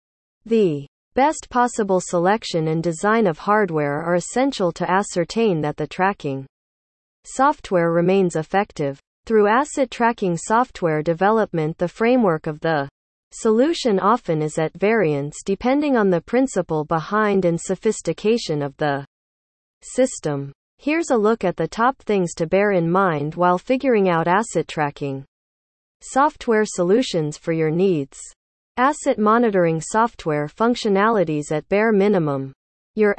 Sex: female